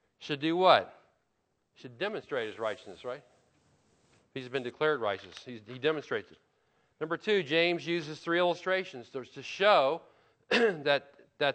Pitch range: 125-160 Hz